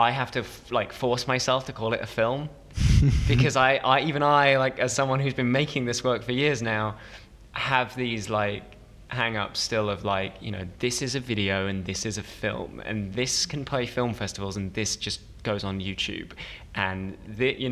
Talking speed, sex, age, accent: 205 wpm, male, 20-39, British